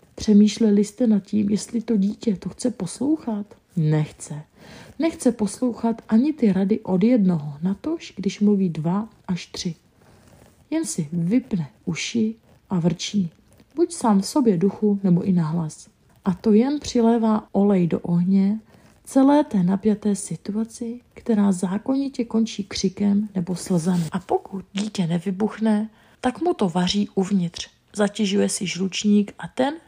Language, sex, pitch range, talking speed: Czech, female, 185-230 Hz, 140 wpm